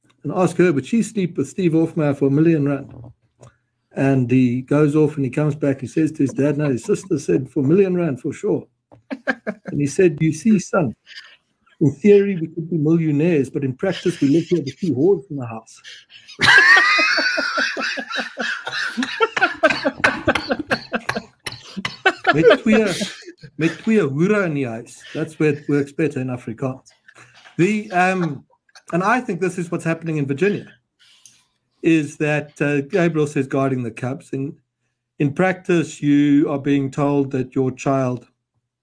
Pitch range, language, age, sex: 130-170 Hz, English, 60-79, male